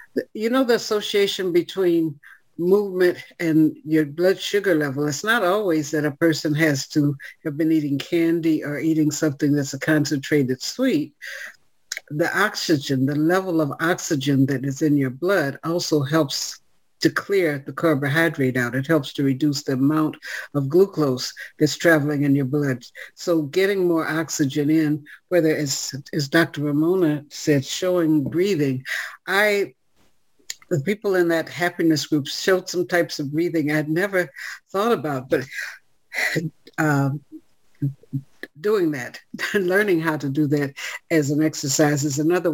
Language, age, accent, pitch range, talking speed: English, 60-79, American, 145-175 Hz, 150 wpm